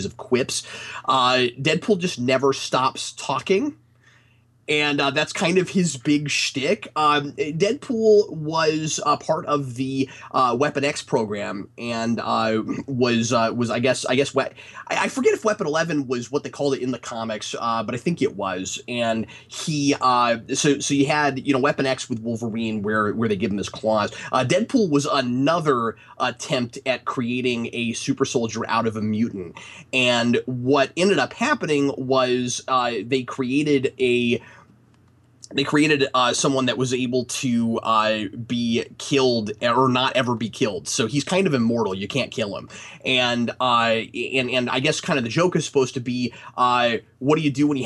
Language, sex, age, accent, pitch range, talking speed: English, male, 30-49, American, 120-145 Hz, 185 wpm